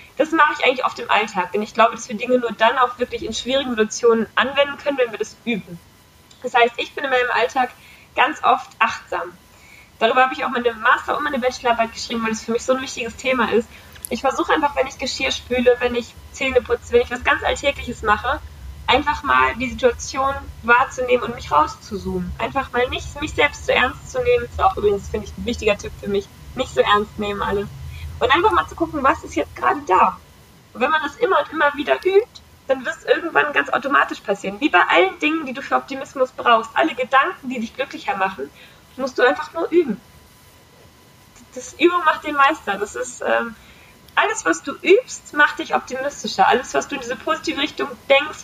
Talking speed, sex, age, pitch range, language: 215 wpm, female, 20-39, 230-290 Hz, German